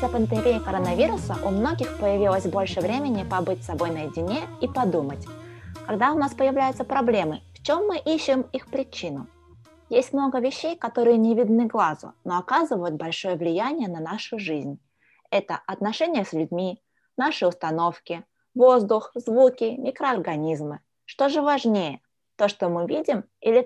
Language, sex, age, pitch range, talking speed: Russian, female, 20-39, 170-270 Hz, 135 wpm